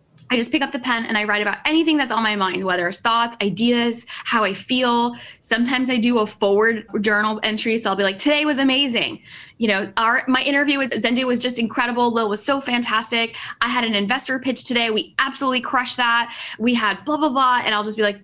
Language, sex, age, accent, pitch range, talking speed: English, female, 10-29, American, 210-260 Hz, 230 wpm